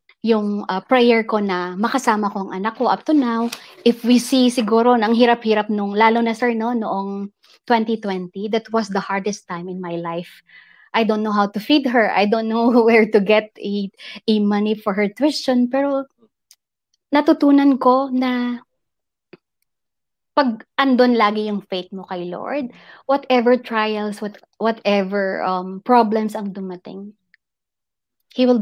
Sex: female